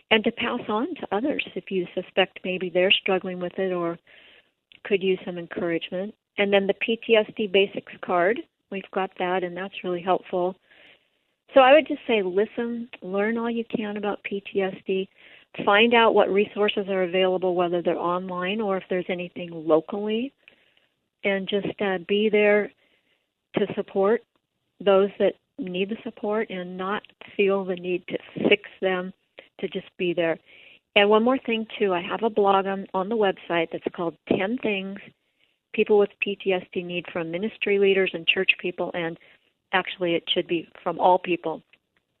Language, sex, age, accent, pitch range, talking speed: English, female, 50-69, American, 180-210 Hz, 165 wpm